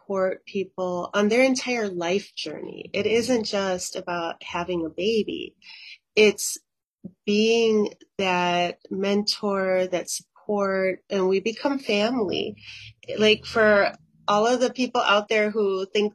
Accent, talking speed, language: American, 125 wpm, English